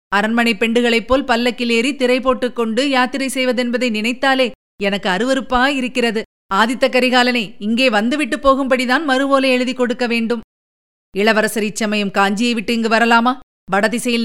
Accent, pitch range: native, 215-255 Hz